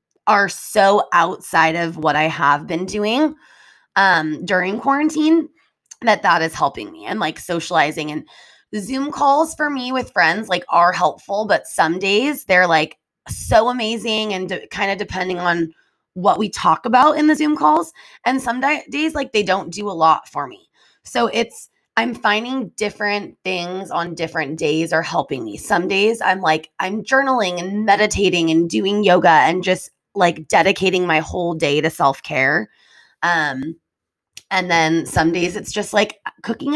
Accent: American